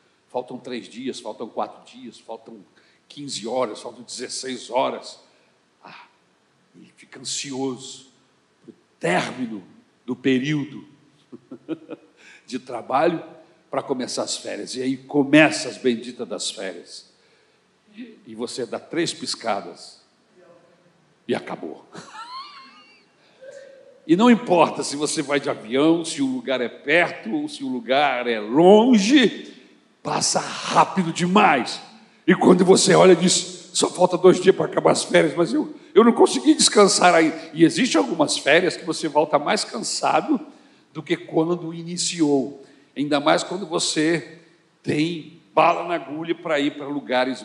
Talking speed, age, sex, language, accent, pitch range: 140 wpm, 60-79, male, Portuguese, Brazilian, 135-180 Hz